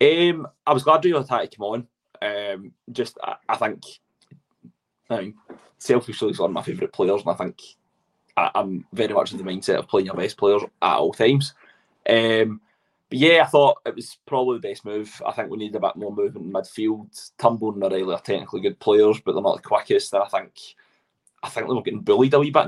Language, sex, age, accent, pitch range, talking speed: English, male, 20-39, British, 105-145 Hz, 230 wpm